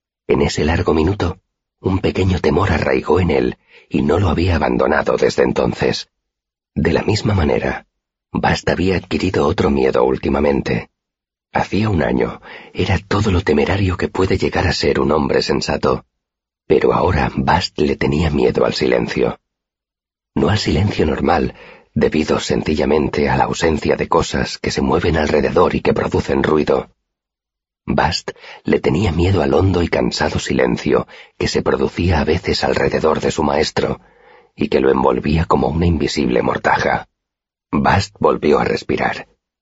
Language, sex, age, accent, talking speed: Spanish, male, 40-59, Spanish, 150 wpm